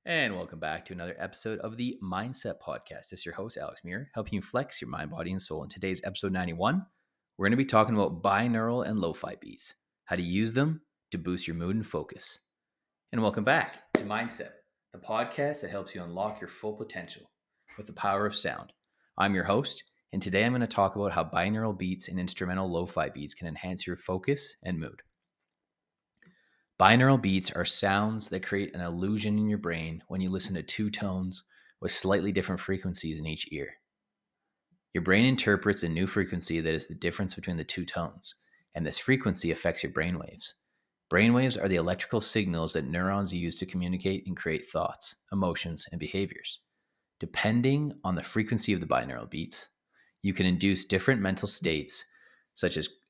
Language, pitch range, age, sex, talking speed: English, 90-110 Hz, 30-49, male, 185 wpm